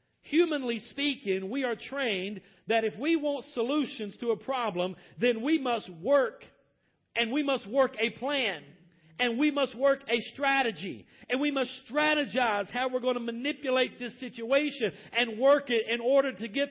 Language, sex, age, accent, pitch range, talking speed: English, male, 40-59, American, 195-265 Hz, 170 wpm